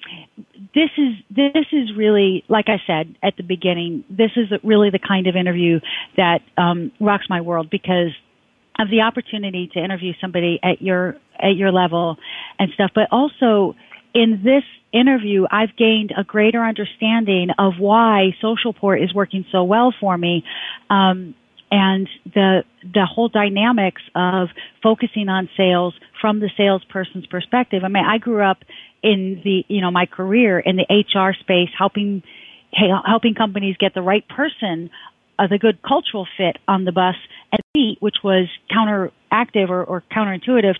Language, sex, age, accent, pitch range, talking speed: English, female, 40-59, American, 185-220 Hz, 155 wpm